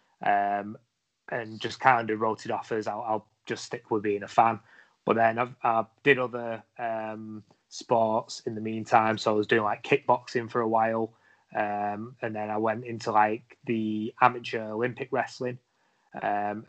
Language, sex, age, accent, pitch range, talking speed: English, male, 30-49, British, 115-130 Hz, 180 wpm